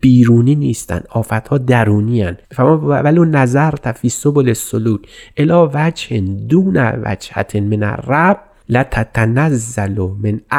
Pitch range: 115-145 Hz